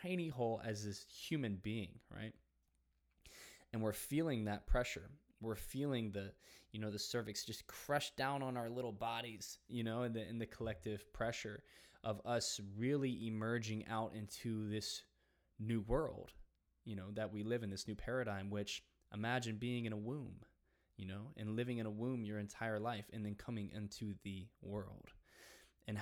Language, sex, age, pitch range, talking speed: English, male, 20-39, 100-115 Hz, 175 wpm